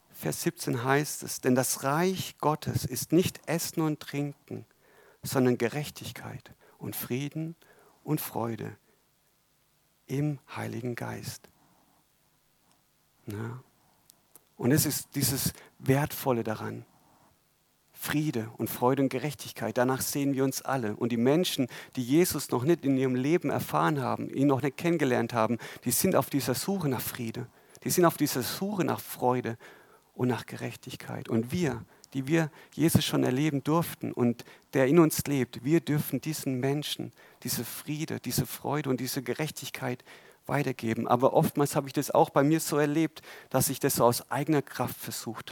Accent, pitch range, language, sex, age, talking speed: German, 125-150 Hz, German, male, 50-69, 150 wpm